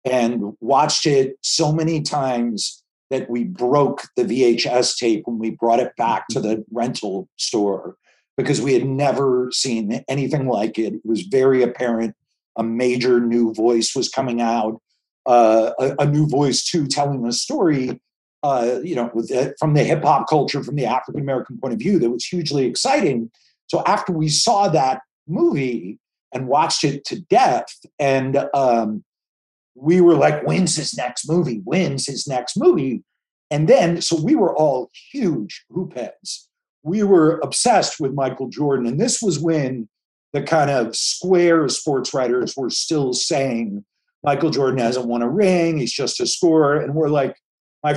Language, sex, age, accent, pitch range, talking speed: English, male, 40-59, American, 125-165 Hz, 170 wpm